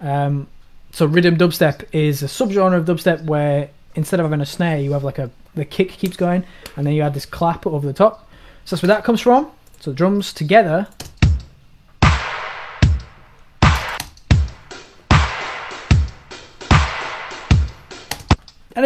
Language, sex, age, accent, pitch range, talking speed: English, male, 20-39, British, 145-190 Hz, 135 wpm